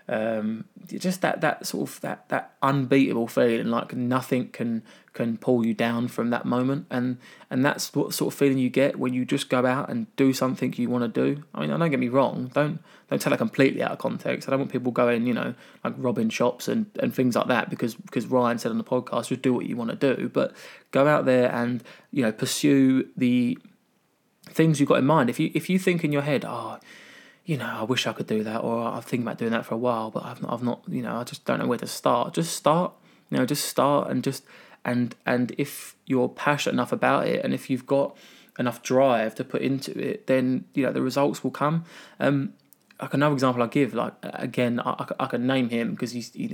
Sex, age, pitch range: male, 20-39, 120-145 Hz